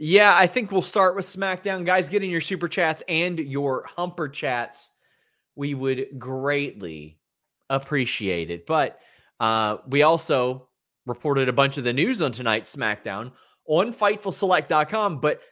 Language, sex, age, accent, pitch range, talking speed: English, male, 30-49, American, 125-175 Hz, 145 wpm